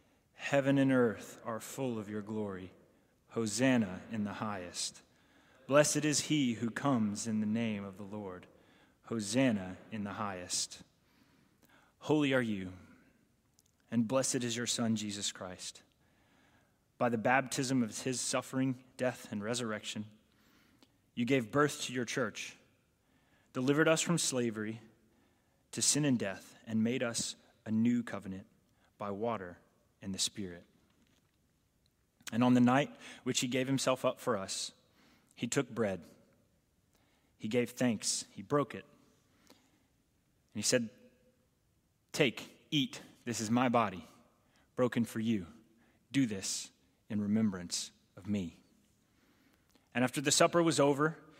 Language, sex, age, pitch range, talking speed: English, male, 20-39, 105-135 Hz, 135 wpm